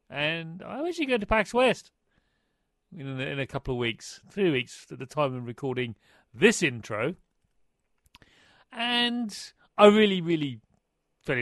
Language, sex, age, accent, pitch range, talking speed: English, male, 40-59, British, 130-210 Hz, 140 wpm